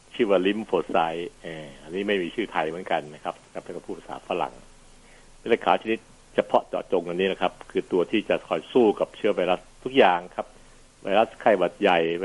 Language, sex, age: Thai, male, 60-79